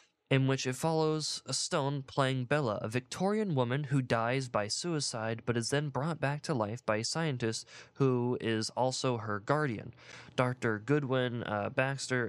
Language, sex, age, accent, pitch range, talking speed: English, male, 20-39, American, 110-140 Hz, 165 wpm